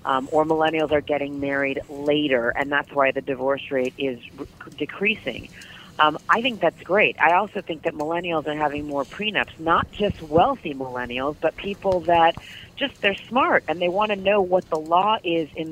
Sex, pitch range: female, 155-195 Hz